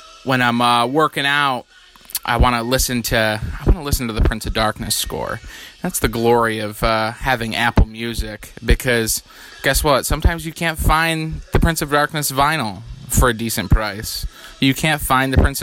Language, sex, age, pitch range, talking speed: English, male, 20-39, 110-135 Hz, 190 wpm